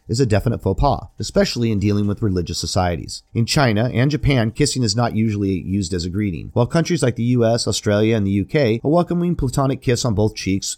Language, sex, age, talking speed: English, male, 30-49, 215 wpm